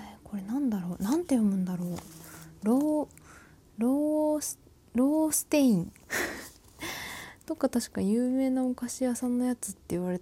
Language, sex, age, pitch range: Japanese, female, 20-39, 195-250 Hz